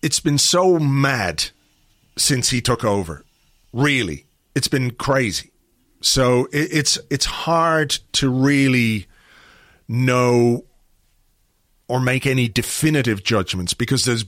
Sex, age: male, 40-59